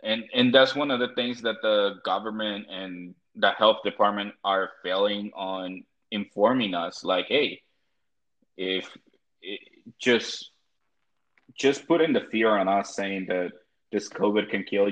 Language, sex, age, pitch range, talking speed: English, male, 20-39, 95-110 Hz, 145 wpm